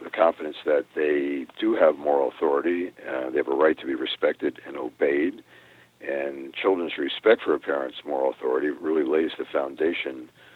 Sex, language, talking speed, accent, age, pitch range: male, English, 170 wpm, American, 60-79, 335-455 Hz